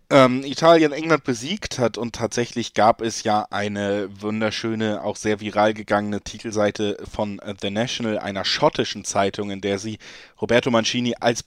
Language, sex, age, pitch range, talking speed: German, male, 20-39, 110-130 Hz, 145 wpm